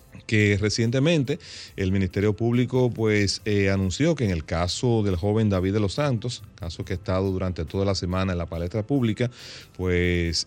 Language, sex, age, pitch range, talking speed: Spanish, male, 30-49, 90-115 Hz, 180 wpm